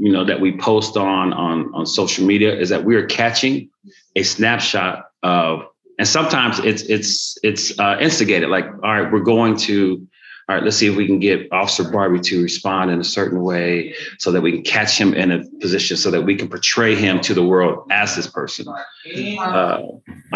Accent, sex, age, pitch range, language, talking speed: American, male, 30-49, 95-115 Hz, English, 205 wpm